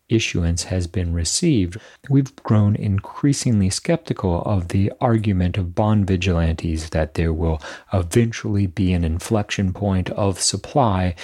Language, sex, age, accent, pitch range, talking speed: English, male, 40-59, American, 85-110 Hz, 130 wpm